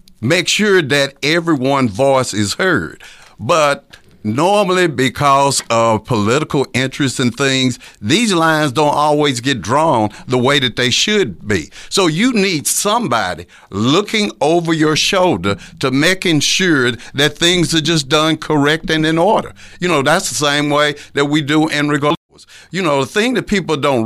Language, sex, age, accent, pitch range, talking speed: English, male, 60-79, American, 130-170 Hz, 160 wpm